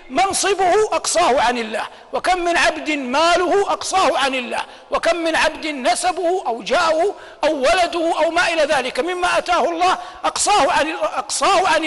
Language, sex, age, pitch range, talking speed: Arabic, male, 50-69, 295-370 Hz, 145 wpm